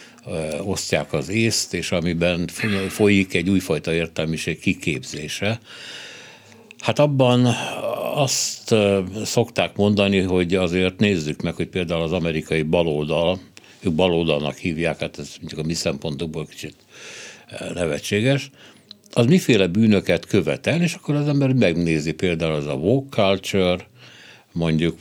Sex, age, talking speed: male, 60-79, 120 wpm